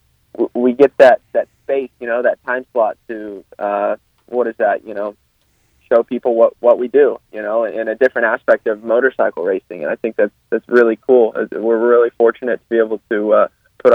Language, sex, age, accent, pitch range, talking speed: English, male, 20-39, American, 110-125 Hz, 205 wpm